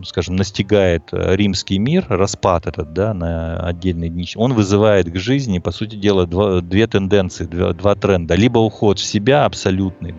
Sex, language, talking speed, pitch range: male, Russian, 160 wpm, 90-105 Hz